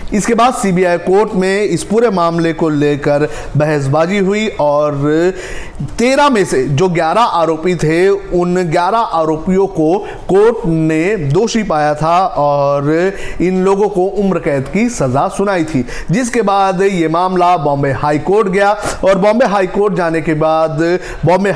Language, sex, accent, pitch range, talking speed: Hindi, male, native, 150-190 Hz, 155 wpm